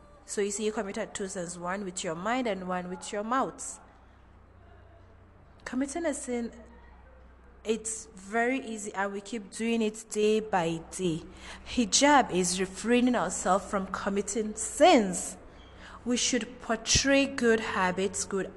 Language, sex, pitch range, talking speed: English, female, 180-225 Hz, 140 wpm